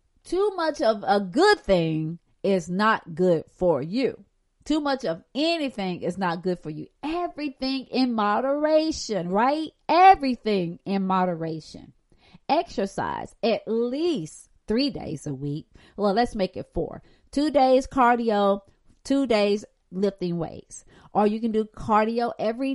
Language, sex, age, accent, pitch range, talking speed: English, female, 40-59, American, 185-275 Hz, 135 wpm